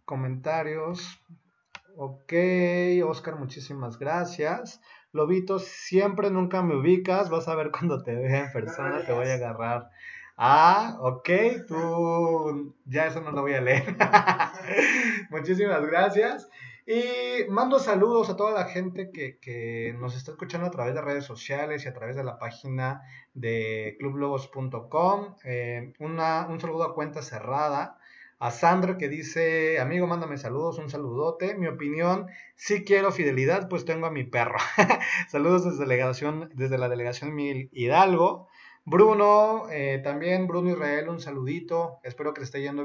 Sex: male